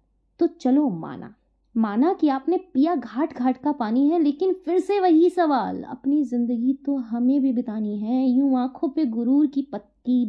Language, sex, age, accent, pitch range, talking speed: Hindi, female, 20-39, native, 225-290 Hz, 175 wpm